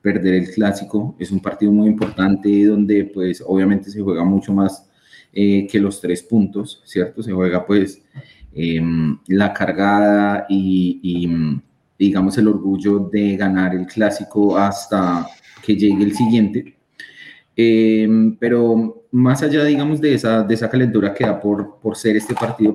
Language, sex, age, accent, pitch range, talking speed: Spanish, male, 30-49, Colombian, 100-110 Hz, 155 wpm